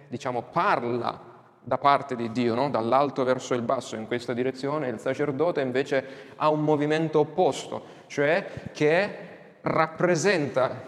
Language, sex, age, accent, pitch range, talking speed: Italian, male, 30-49, native, 125-160 Hz, 125 wpm